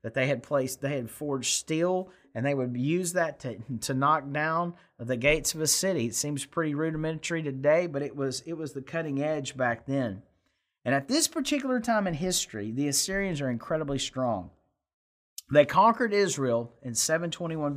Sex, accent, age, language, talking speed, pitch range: male, American, 40-59, English, 180 wpm, 125-170 Hz